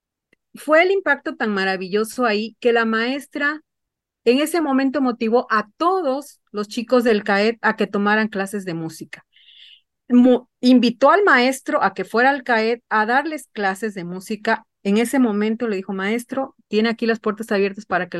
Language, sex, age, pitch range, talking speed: Spanish, female, 40-59, 205-260 Hz, 170 wpm